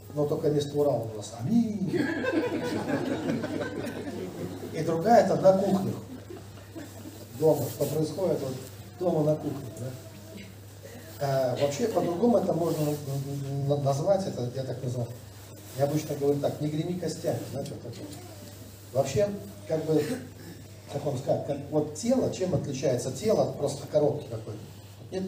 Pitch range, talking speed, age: 110-170 Hz, 130 wpm, 40-59